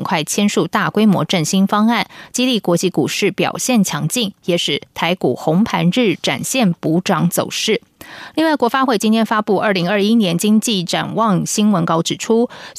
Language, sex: Chinese, female